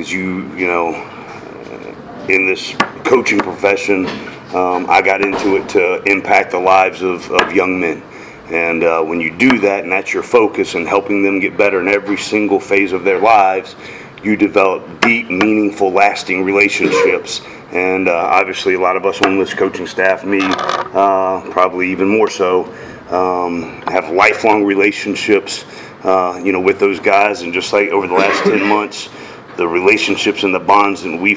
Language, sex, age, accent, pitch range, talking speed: English, male, 40-59, American, 90-100 Hz, 170 wpm